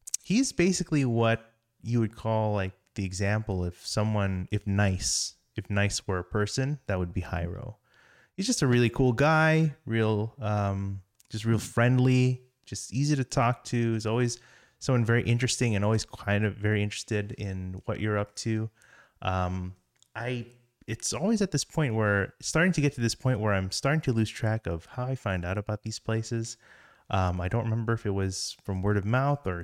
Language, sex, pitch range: English, male, 95-120 Hz